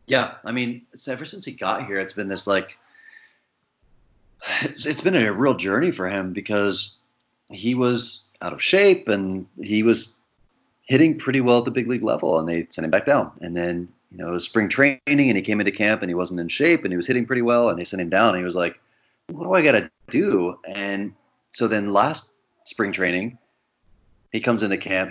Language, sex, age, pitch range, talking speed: English, male, 30-49, 90-120 Hz, 220 wpm